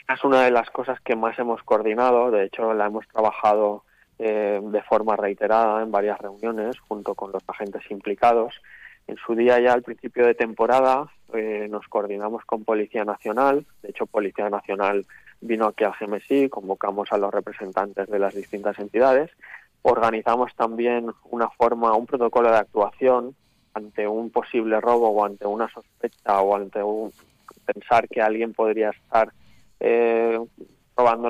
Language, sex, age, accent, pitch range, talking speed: Spanish, male, 20-39, Spanish, 105-115 Hz, 155 wpm